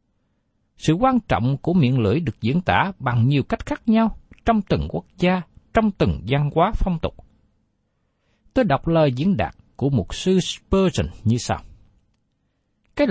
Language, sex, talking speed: Vietnamese, male, 165 wpm